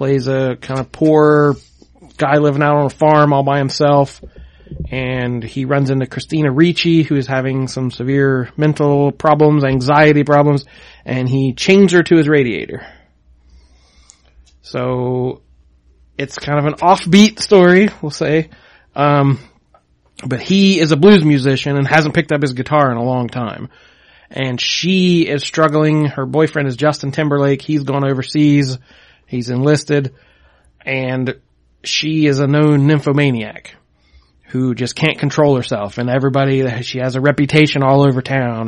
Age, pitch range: 30-49, 125-150 Hz